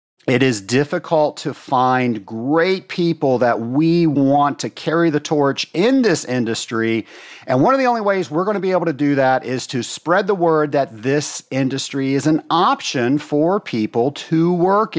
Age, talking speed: 50-69, 185 wpm